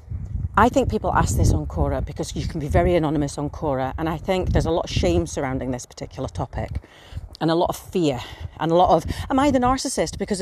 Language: English